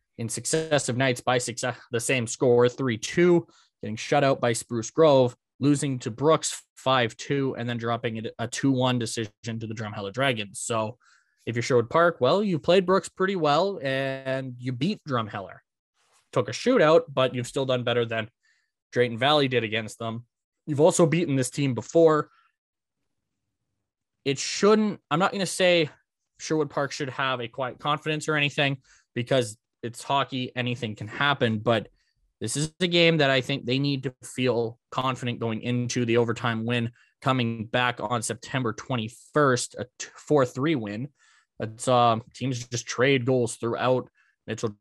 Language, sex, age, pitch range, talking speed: English, male, 20-39, 115-140 Hz, 160 wpm